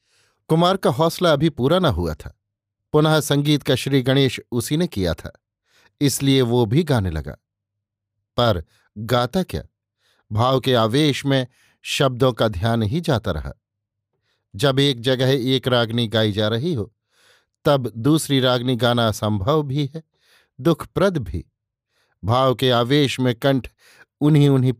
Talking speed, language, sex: 150 wpm, Hindi, male